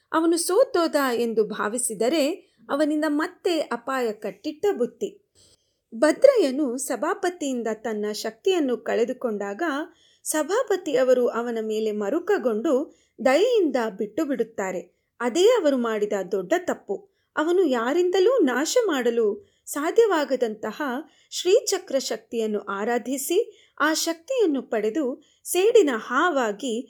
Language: Kannada